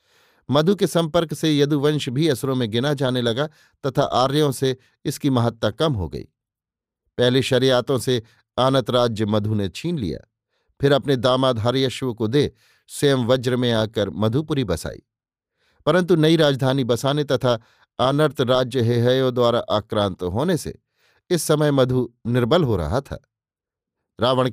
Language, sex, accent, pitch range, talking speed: Hindi, male, native, 115-145 Hz, 140 wpm